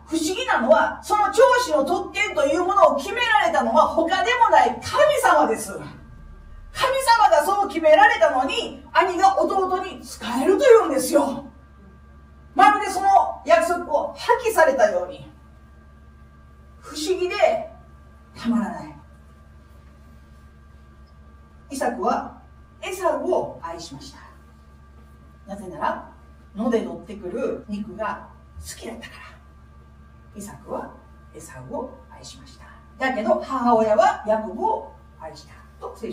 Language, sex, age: Japanese, female, 40-59